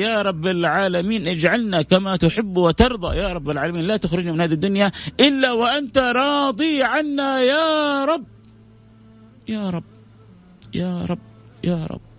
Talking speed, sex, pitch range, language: 135 wpm, male, 110-150 Hz, English